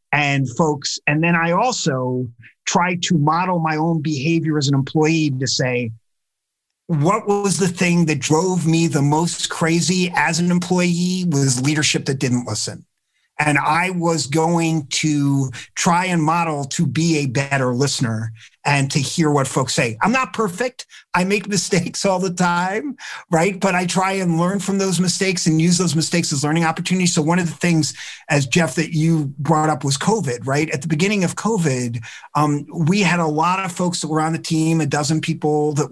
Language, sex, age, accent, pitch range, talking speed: English, male, 50-69, American, 145-175 Hz, 190 wpm